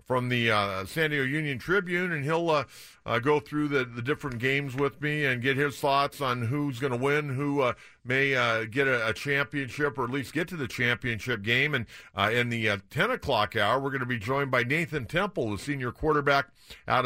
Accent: American